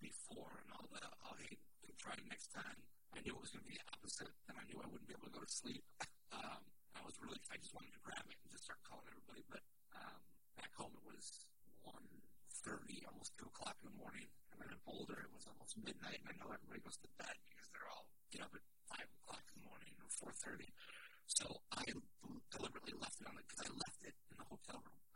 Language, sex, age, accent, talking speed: English, male, 50-69, American, 240 wpm